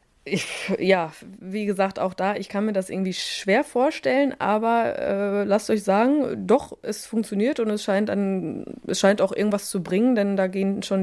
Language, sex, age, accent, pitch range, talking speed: German, female, 20-39, German, 180-230 Hz, 175 wpm